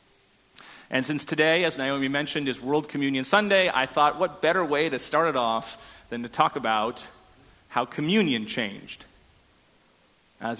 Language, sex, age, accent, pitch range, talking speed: English, male, 40-59, American, 120-160 Hz, 155 wpm